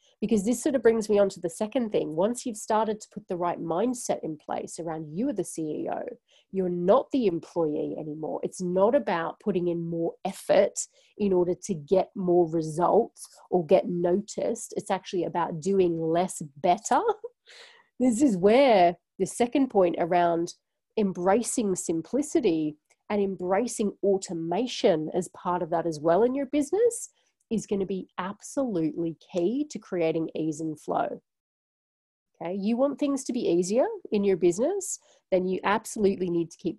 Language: English